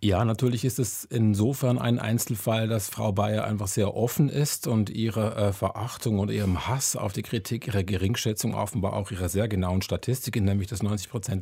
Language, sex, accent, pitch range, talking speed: German, male, German, 105-120 Hz, 185 wpm